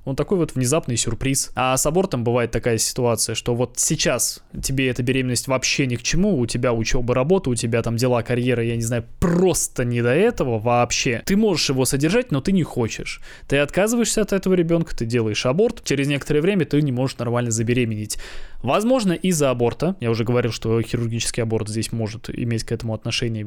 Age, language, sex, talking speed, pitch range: 20-39, Russian, male, 195 wpm, 115-145 Hz